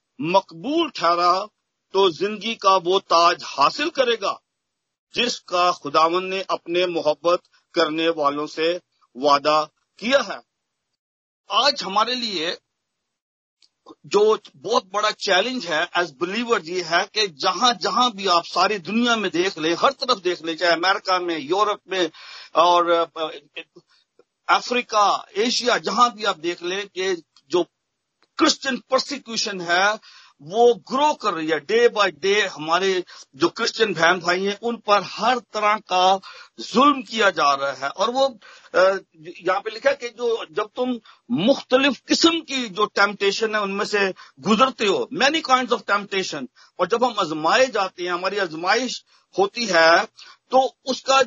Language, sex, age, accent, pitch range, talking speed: Hindi, male, 50-69, native, 175-245 Hz, 145 wpm